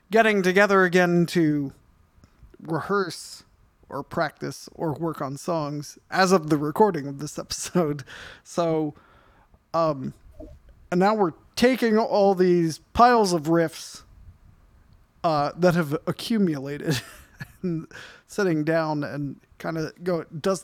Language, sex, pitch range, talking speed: English, male, 150-195 Hz, 120 wpm